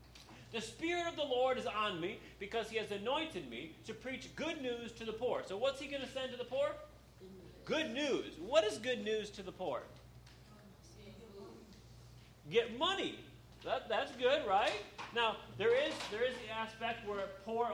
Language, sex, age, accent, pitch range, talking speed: English, male, 40-59, American, 190-255 Hz, 175 wpm